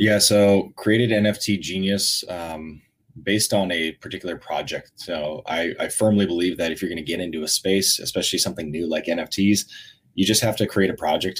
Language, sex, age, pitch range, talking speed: English, male, 20-39, 85-105 Hz, 195 wpm